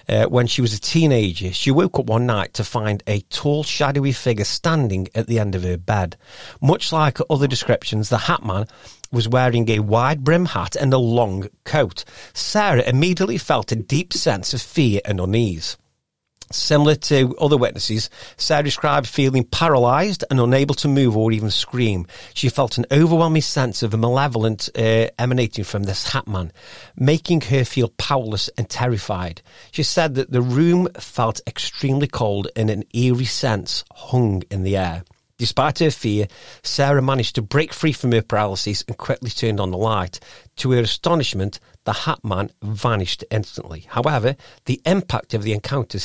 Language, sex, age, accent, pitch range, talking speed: English, male, 40-59, British, 100-130 Hz, 175 wpm